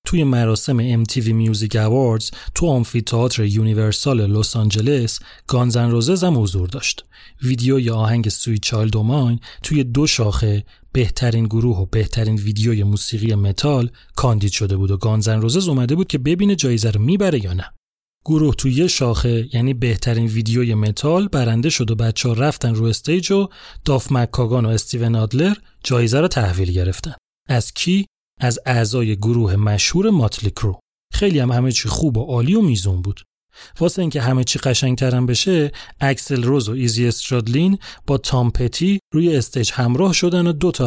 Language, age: Persian, 30-49